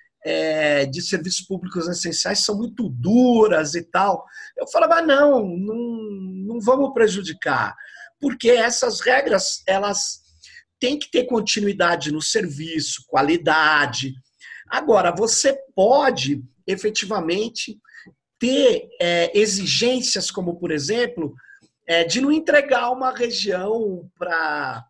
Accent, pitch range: Brazilian, 175-260 Hz